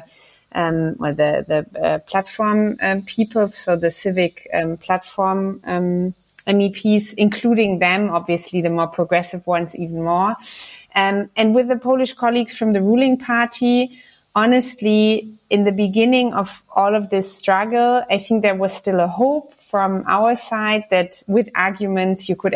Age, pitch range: 30-49, 195-230 Hz